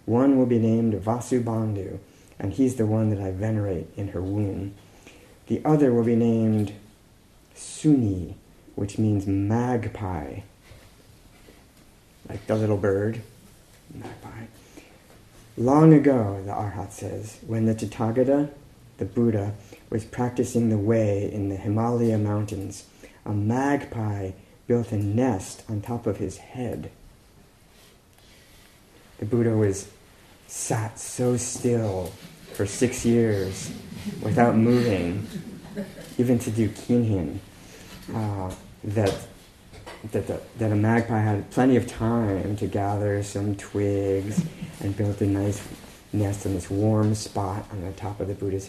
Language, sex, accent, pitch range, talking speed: English, male, American, 100-115 Hz, 125 wpm